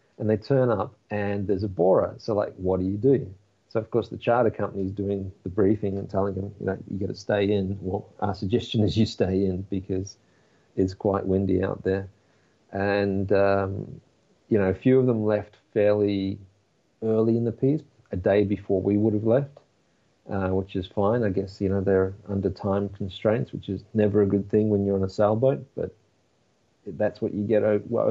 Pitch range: 95-105 Hz